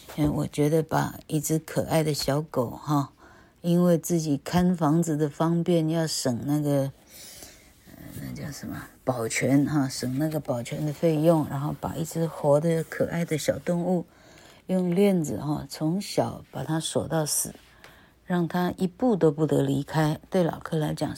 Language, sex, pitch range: Chinese, female, 145-175 Hz